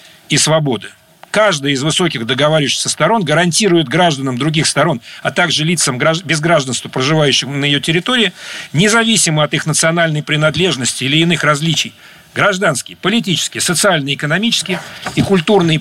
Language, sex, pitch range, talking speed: Russian, male, 140-180 Hz, 130 wpm